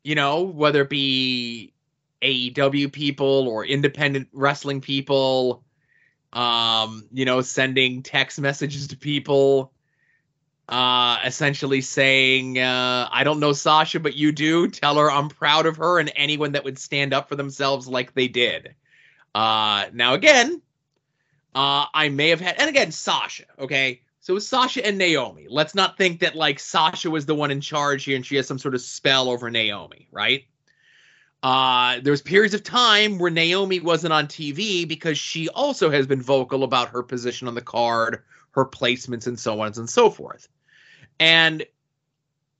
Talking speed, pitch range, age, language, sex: 165 wpm, 130-155 Hz, 20-39, English, male